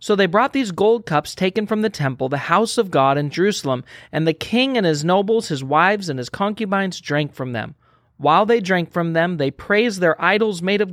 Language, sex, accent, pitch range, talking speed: English, male, American, 160-215 Hz, 225 wpm